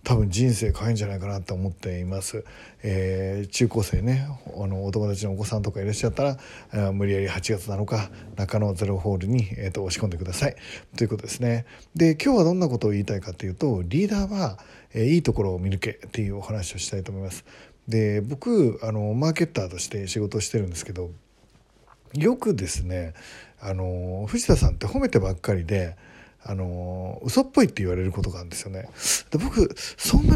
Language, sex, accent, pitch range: Japanese, male, native, 95-140 Hz